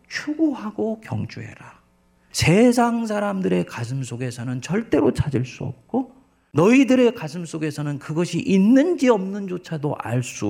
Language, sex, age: Korean, male, 40-59